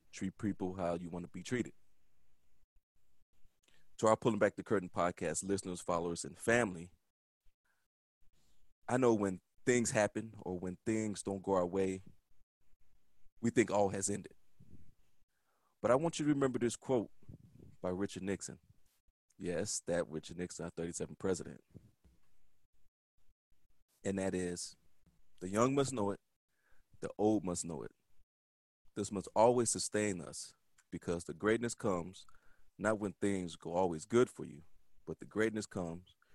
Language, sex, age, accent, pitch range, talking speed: English, male, 20-39, American, 85-105 Hz, 145 wpm